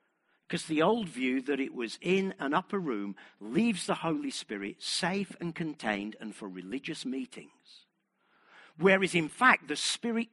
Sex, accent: male, British